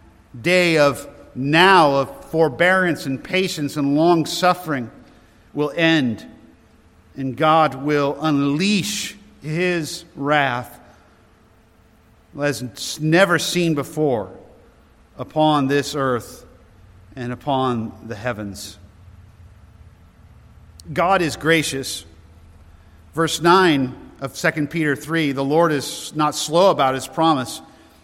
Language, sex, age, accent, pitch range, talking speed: English, male, 50-69, American, 120-160 Hz, 100 wpm